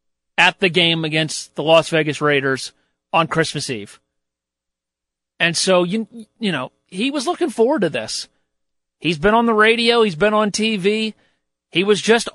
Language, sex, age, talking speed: English, male, 40-59, 165 wpm